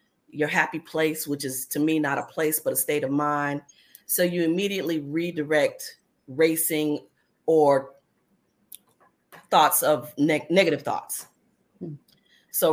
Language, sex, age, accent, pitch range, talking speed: English, female, 30-49, American, 150-180 Hz, 125 wpm